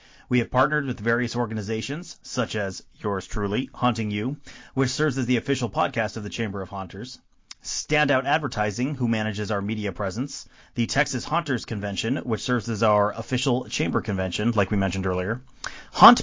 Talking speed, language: 170 wpm, English